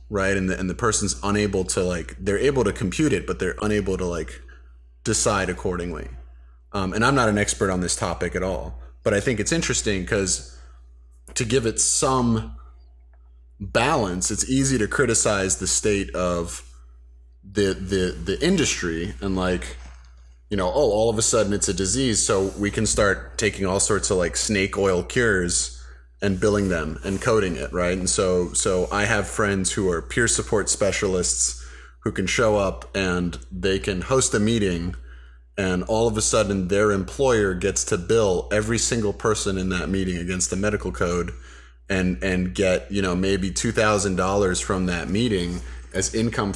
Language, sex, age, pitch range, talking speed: English, male, 30-49, 65-100 Hz, 180 wpm